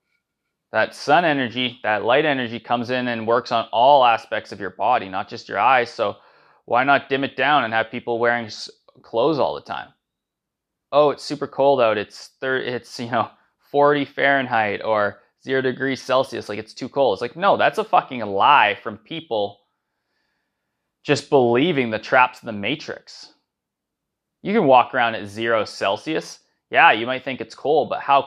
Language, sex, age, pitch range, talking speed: English, male, 20-39, 110-140 Hz, 180 wpm